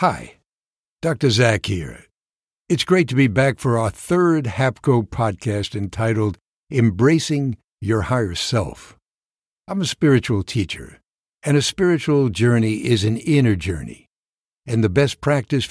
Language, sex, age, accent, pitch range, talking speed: English, male, 60-79, American, 110-145 Hz, 135 wpm